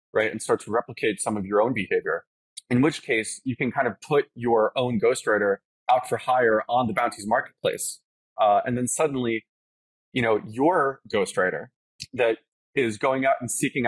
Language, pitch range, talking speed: English, 110-140 Hz, 180 wpm